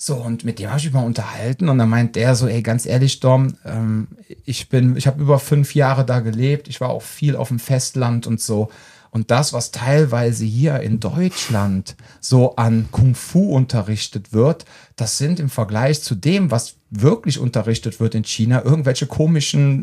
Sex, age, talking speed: male, 40-59, 190 wpm